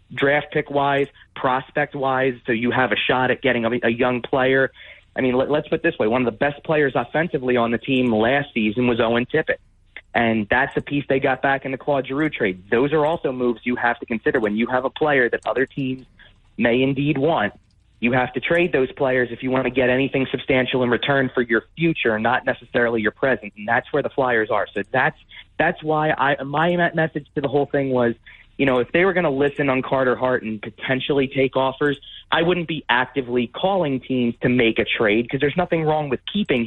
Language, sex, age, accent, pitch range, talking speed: English, male, 30-49, American, 125-150 Hz, 225 wpm